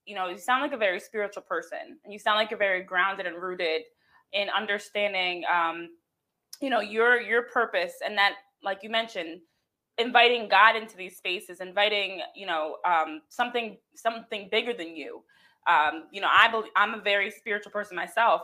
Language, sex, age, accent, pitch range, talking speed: English, female, 20-39, American, 185-240 Hz, 180 wpm